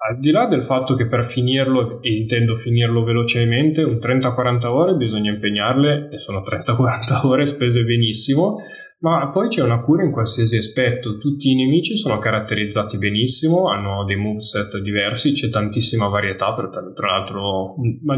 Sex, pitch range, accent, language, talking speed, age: male, 110-140 Hz, native, Italian, 155 wpm, 10-29